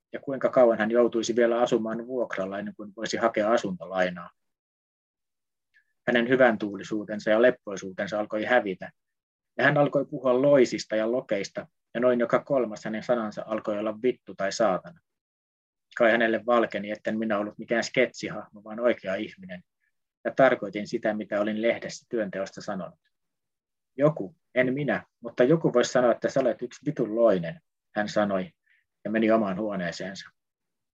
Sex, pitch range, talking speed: male, 105-125 Hz, 145 wpm